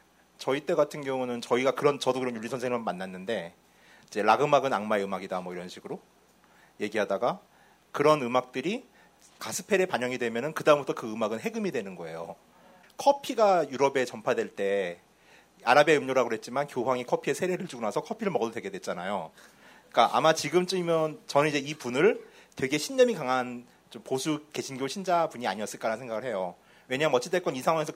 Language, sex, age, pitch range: Korean, male, 40-59, 130-200 Hz